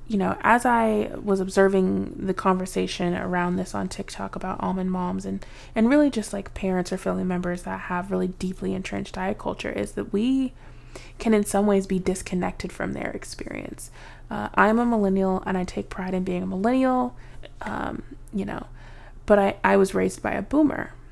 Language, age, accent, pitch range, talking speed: English, 20-39, American, 180-205 Hz, 190 wpm